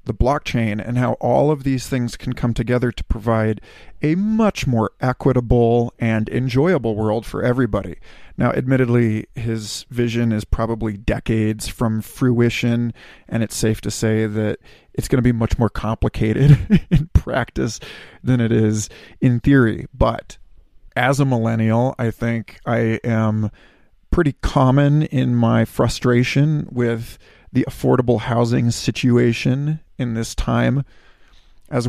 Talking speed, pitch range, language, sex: 135 wpm, 110-125 Hz, English, male